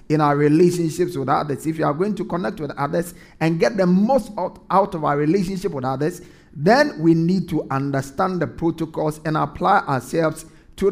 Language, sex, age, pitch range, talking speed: English, male, 50-69, 155-205 Hz, 185 wpm